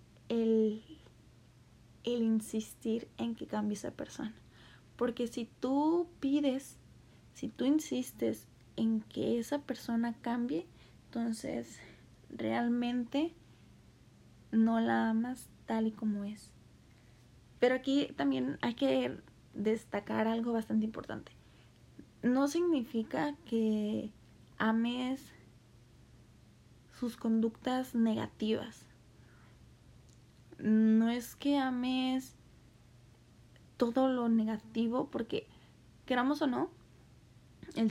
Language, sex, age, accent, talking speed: Spanish, female, 20-39, Mexican, 90 wpm